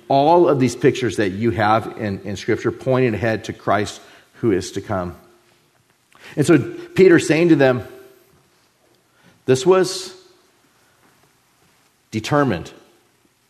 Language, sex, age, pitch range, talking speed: English, male, 40-59, 115-145 Hz, 120 wpm